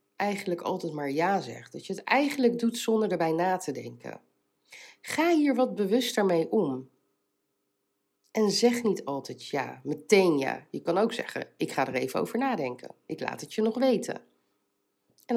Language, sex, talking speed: Dutch, female, 175 wpm